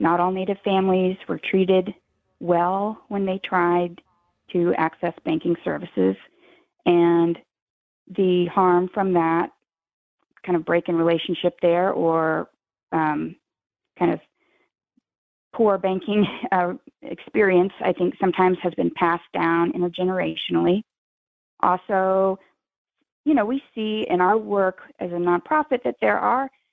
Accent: American